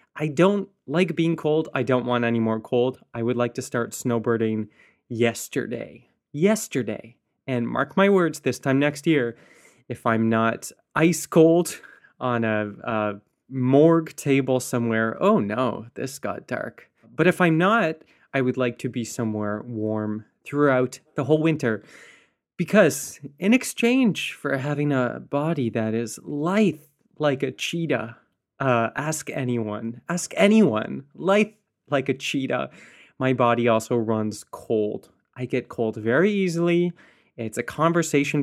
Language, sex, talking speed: English, male, 145 wpm